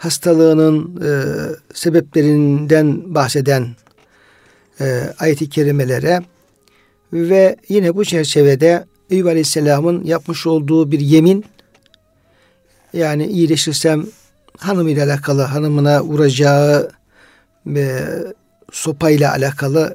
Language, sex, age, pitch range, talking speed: Turkish, male, 60-79, 145-175 Hz, 80 wpm